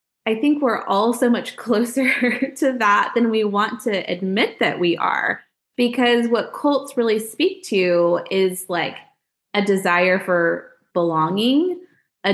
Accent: American